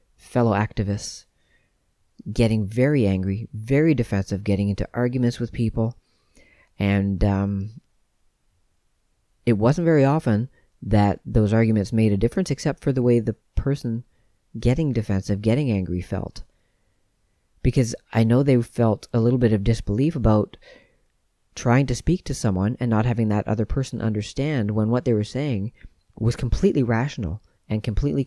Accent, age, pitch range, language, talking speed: American, 40-59, 100-120 Hz, English, 145 wpm